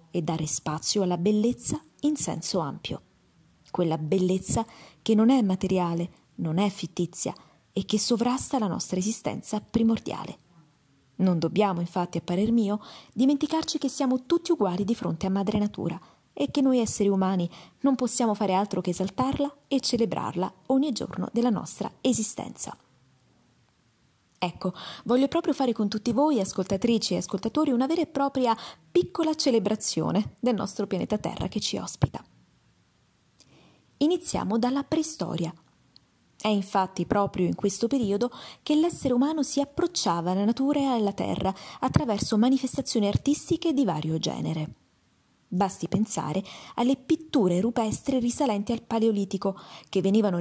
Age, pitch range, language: 20-39, 185-255 Hz, Italian